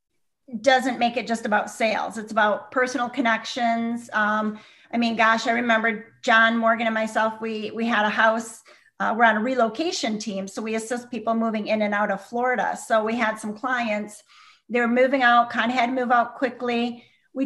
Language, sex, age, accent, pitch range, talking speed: English, female, 40-59, American, 215-245 Hz, 200 wpm